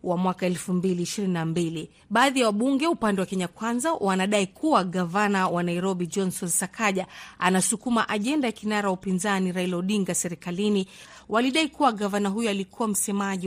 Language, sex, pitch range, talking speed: Swahili, female, 185-230 Hz, 150 wpm